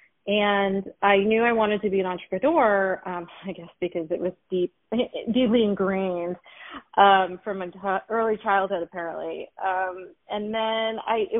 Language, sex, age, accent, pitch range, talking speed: English, female, 30-49, American, 170-200 Hz, 160 wpm